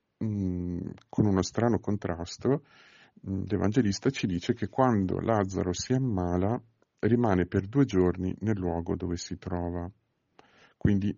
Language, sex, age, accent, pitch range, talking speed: Italian, male, 50-69, native, 90-105 Hz, 120 wpm